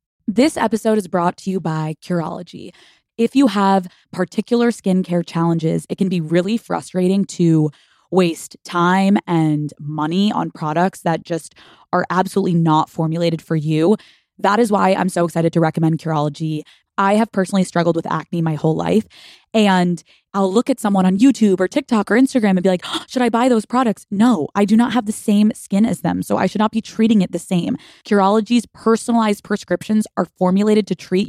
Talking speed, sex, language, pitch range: 185 wpm, female, English, 170-215 Hz